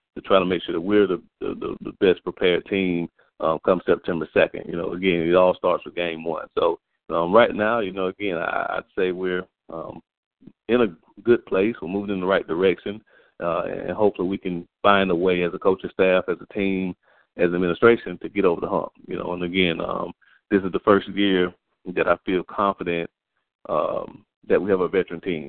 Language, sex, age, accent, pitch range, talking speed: English, male, 30-49, American, 85-100 Hz, 215 wpm